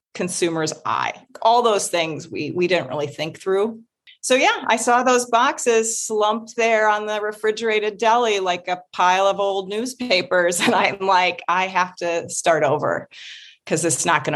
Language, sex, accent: English, female, American